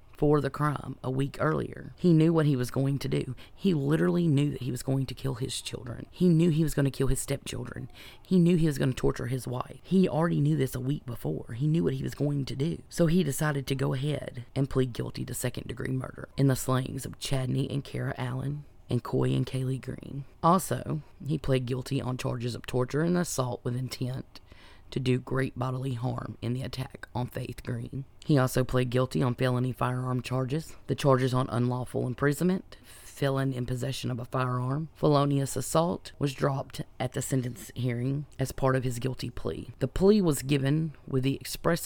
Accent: American